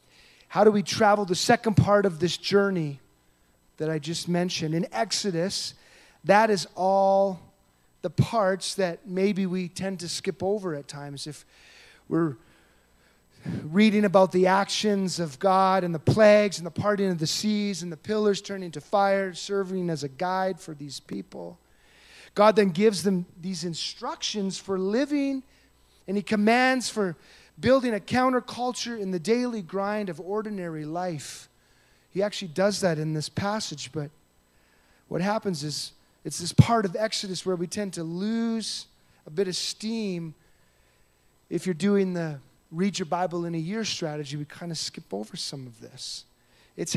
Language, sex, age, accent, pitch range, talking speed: English, male, 30-49, American, 155-205 Hz, 160 wpm